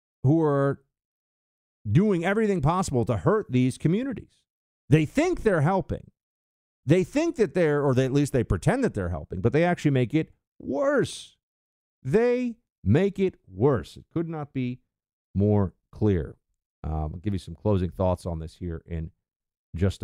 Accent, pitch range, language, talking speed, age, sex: American, 100-155 Hz, English, 160 wpm, 50-69, male